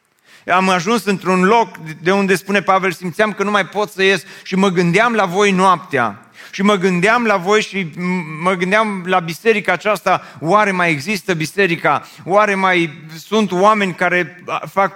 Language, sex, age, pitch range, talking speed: Romanian, male, 30-49, 140-195 Hz, 170 wpm